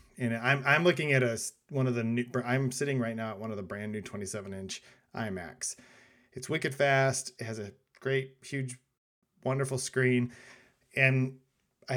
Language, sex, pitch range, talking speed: English, male, 115-135 Hz, 175 wpm